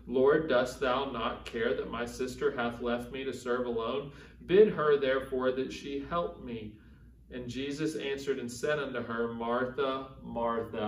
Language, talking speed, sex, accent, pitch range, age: English, 165 wpm, male, American, 115-135 Hz, 40-59